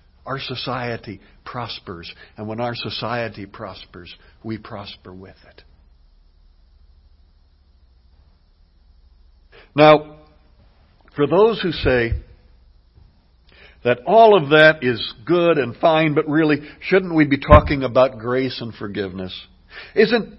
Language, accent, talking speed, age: English, American, 105 wpm, 60-79